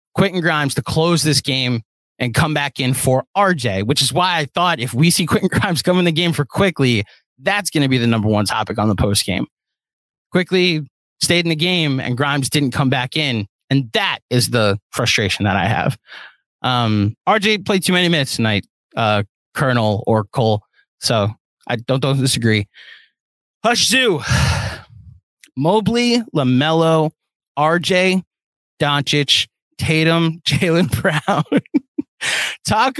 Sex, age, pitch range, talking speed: male, 30-49, 120-180 Hz, 155 wpm